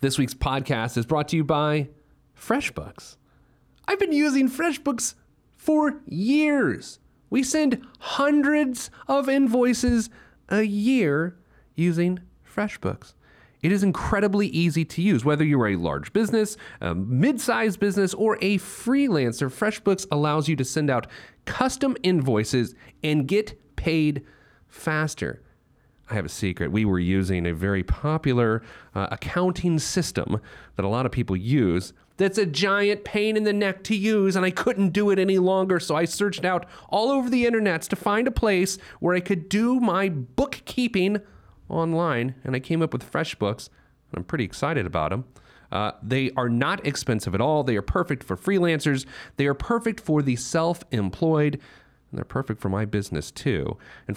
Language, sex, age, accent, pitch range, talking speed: English, male, 40-59, American, 130-210 Hz, 160 wpm